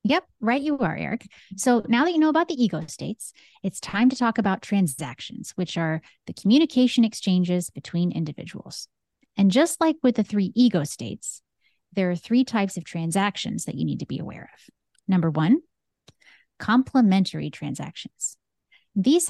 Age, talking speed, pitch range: 30-49, 165 wpm, 175-245 Hz